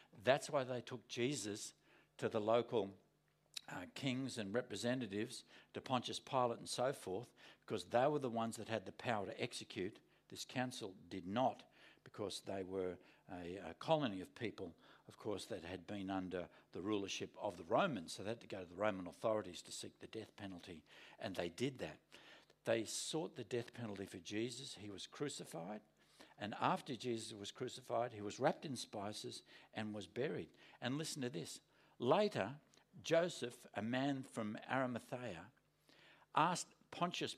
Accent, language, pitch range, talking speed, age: Australian, English, 105-160 Hz, 170 wpm, 60-79